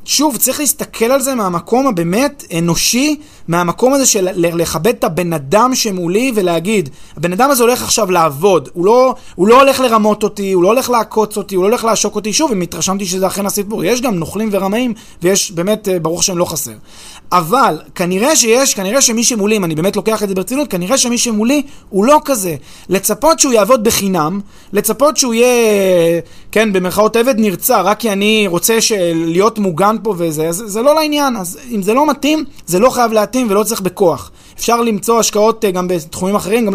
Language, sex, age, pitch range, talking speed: Hebrew, male, 30-49, 180-235 Hz, 165 wpm